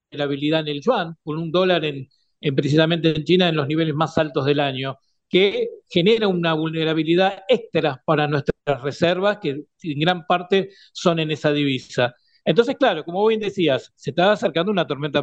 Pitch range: 155-205 Hz